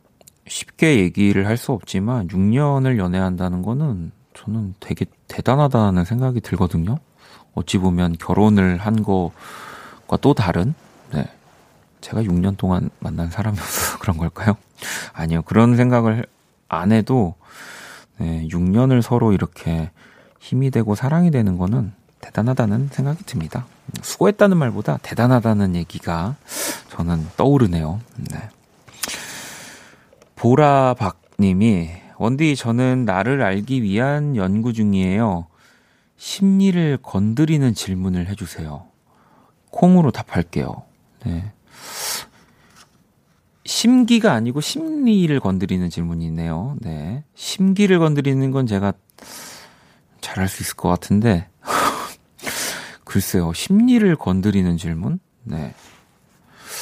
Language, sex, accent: Korean, male, native